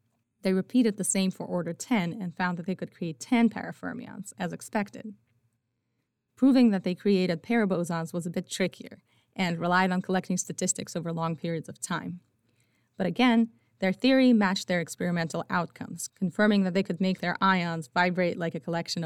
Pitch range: 165-200 Hz